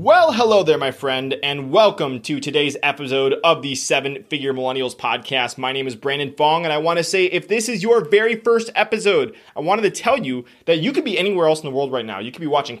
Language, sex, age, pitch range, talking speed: English, male, 20-39, 145-200 Hz, 250 wpm